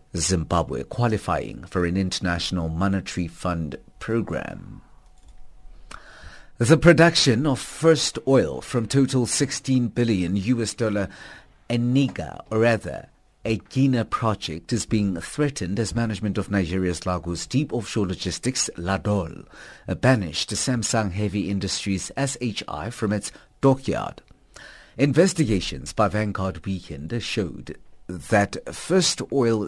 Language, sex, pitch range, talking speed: English, male, 95-125 Hz, 105 wpm